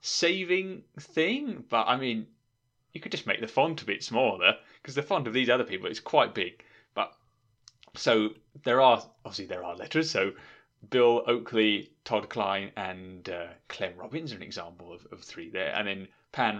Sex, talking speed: male, 185 wpm